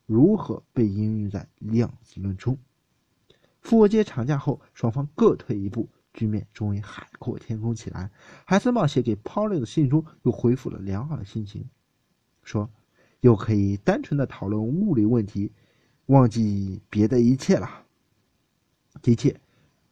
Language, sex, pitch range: Chinese, male, 110-150 Hz